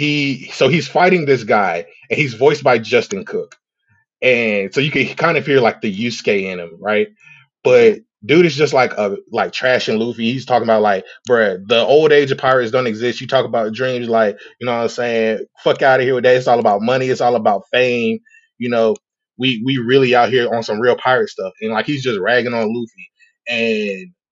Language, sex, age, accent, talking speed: English, male, 20-39, American, 220 wpm